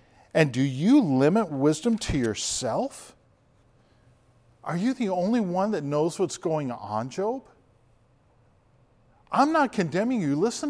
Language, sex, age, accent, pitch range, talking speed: English, male, 50-69, American, 120-185 Hz, 130 wpm